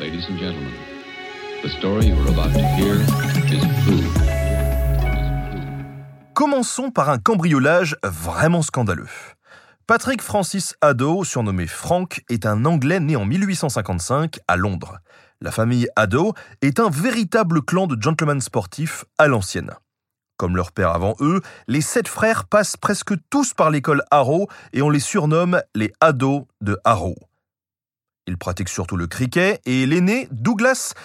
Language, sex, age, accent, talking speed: French, male, 30-49, French, 120 wpm